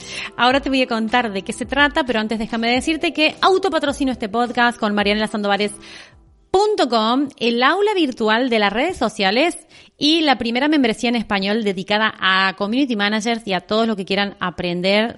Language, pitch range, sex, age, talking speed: Spanish, 205-280 Hz, female, 30-49, 170 wpm